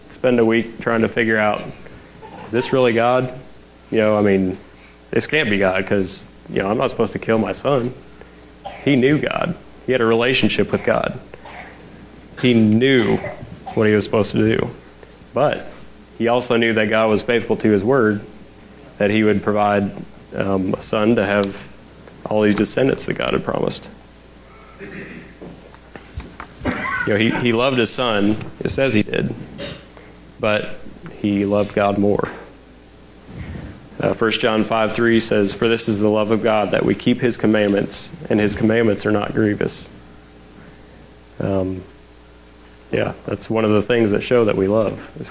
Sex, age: male, 30-49